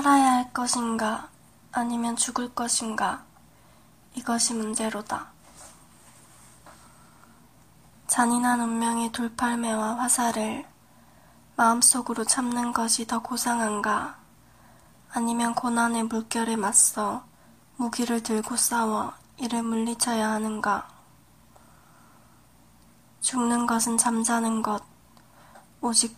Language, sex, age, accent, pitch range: Korean, female, 20-39, native, 225-245 Hz